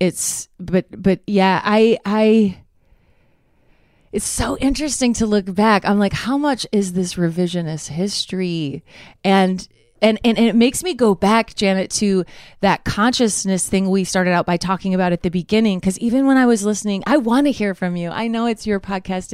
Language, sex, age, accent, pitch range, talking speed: English, female, 30-49, American, 190-250 Hz, 185 wpm